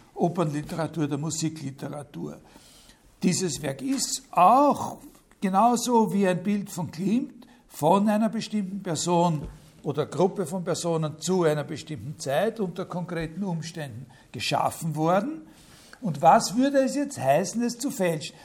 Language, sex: German, male